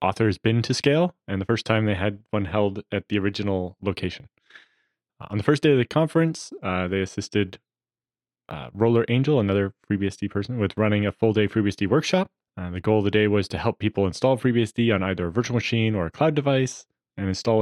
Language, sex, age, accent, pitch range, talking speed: English, male, 20-39, American, 95-115 Hz, 210 wpm